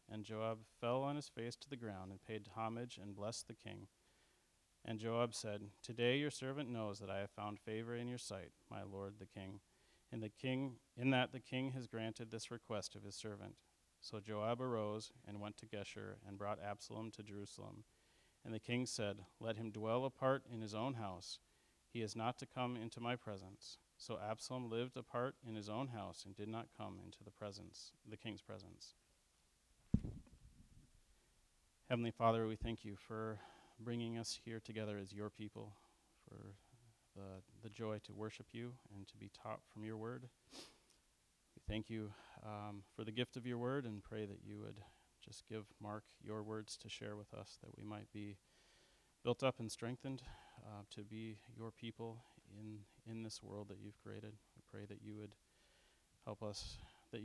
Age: 40-59